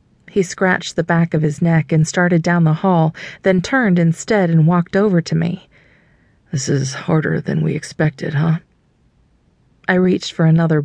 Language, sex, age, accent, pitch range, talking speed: English, female, 40-59, American, 150-180 Hz, 170 wpm